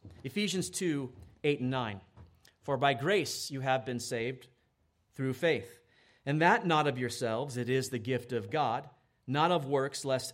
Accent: American